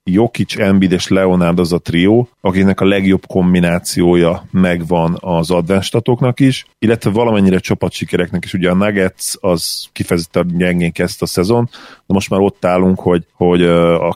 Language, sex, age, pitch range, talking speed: Hungarian, male, 40-59, 85-100 Hz, 155 wpm